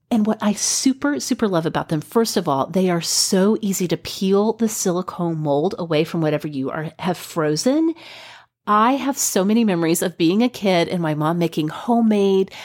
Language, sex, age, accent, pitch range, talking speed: English, female, 30-49, American, 160-210 Hz, 195 wpm